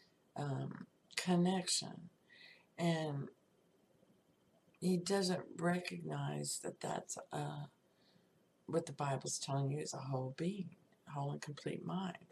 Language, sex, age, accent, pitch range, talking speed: English, female, 50-69, American, 155-185 Hz, 110 wpm